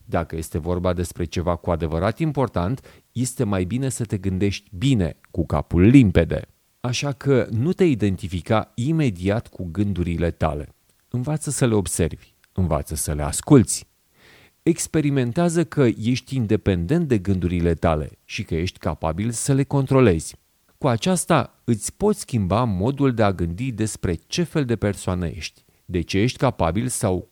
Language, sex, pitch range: Hungarian, male, 90-135 Hz